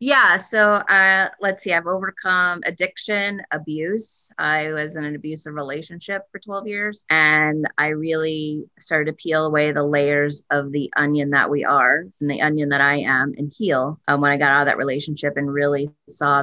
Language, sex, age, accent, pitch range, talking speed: English, female, 30-49, American, 145-160 Hz, 190 wpm